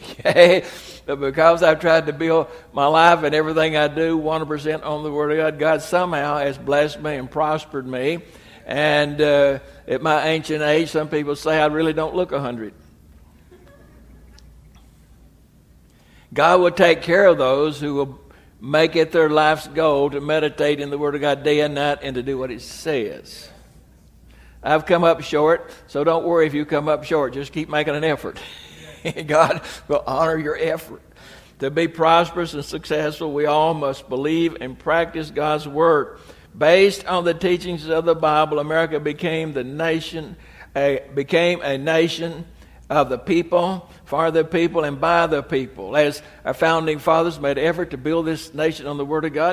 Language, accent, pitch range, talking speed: English, American, 145-165 Hz, 175 wpm